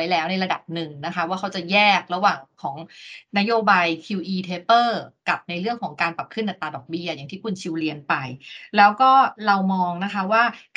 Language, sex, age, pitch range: Thai, female, 30-49, 175-230 Hz